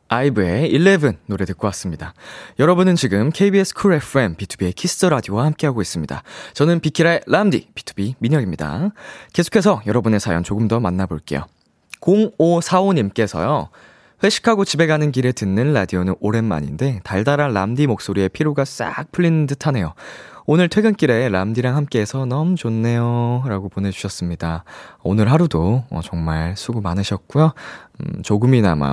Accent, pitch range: native, 95-155 Hz